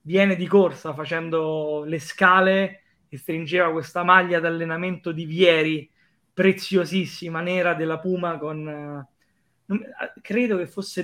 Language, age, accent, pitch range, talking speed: Italian, 20-39, native, 155-185 Hz, 120 wpm